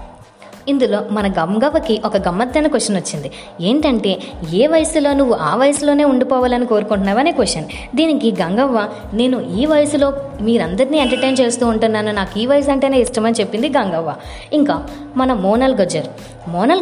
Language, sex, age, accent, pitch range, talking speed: Telugu, female, 20-39, native, 210-280 Hz, 135 wpm